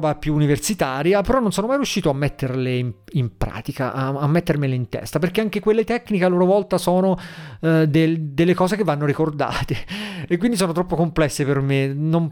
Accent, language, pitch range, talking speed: native, Italian, 135-175 Hz, 195 wpm